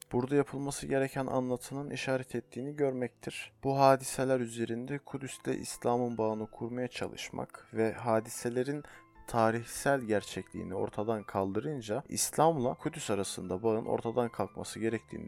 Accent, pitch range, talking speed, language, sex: native, 110-135 Hz, 110 wpm, Turkish, male